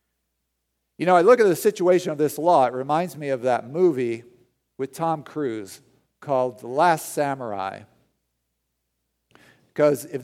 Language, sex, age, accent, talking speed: English, male, 50-69, American, 145 wpm